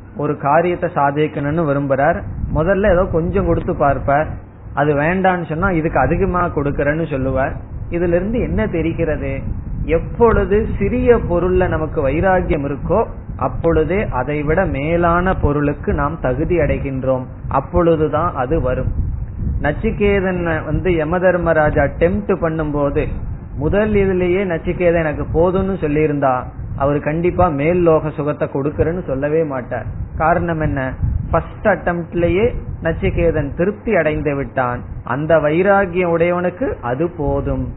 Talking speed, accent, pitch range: 95 wpm, native, 135-175 Hz